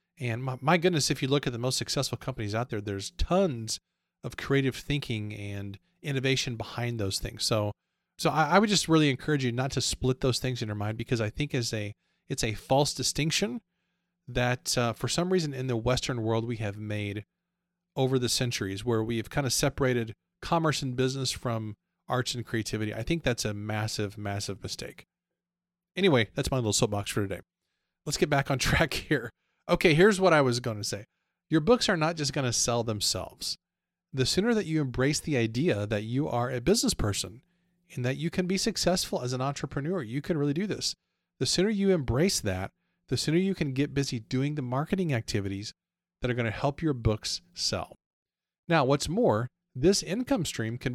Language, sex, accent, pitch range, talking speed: English, male, American, 115-160 Hz, 200 wpm